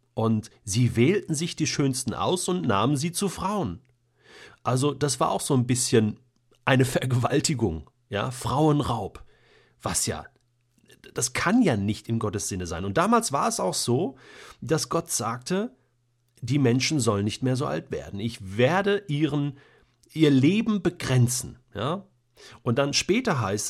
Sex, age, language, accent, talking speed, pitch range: male, 40-59, German, German, 155 wpm, 105-135 Hz